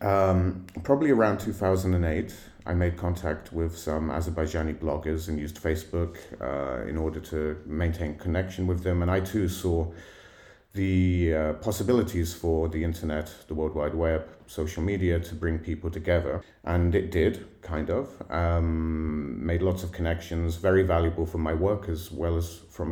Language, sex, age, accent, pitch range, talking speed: English, male, 30-49, British, 80-95 Hz, 160 wpm